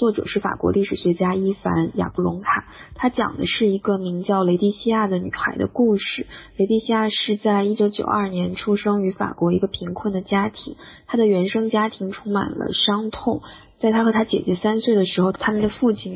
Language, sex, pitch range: Chinese, female, 185-215 Hz